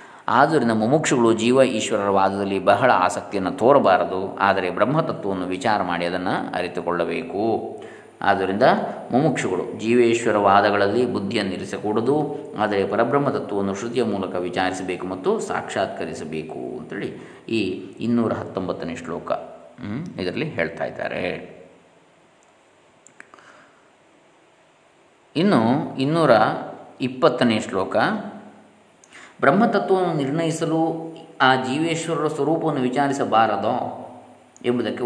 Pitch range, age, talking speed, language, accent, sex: 105-135 Hz, 20-39, 75 wpm, Kannada, native, male